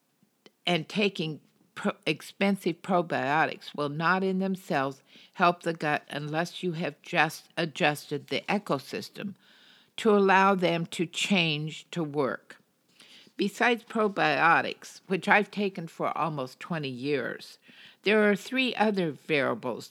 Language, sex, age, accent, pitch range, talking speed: English, female, 60-79, American, 155-205 Hz, 120 wpm